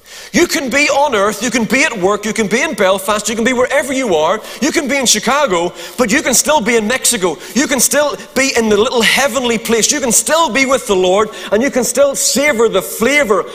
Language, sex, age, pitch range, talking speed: English, male, 40-59, 220-285 Hz, 250 wpm